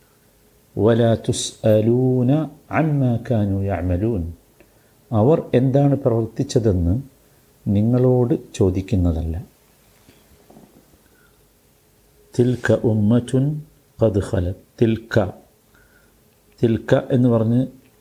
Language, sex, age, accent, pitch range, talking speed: Malayalam, male, 50-69, native, 100-120 Hz, 70 wpm